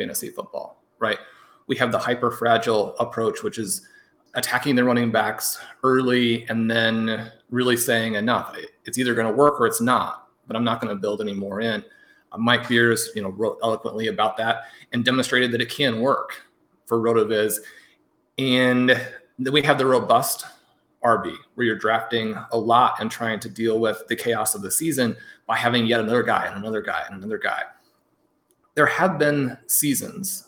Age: 30-49